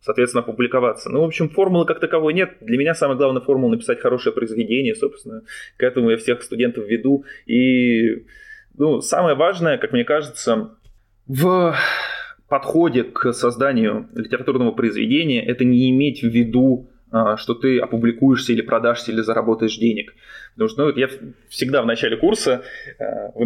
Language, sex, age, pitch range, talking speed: Russian, male, 20-39, 120-165 Hz, 150 wpm